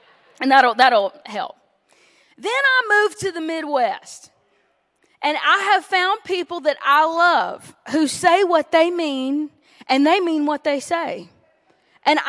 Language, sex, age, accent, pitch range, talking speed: English, female, 20-39, American, 280-360 Hz, 145 wpm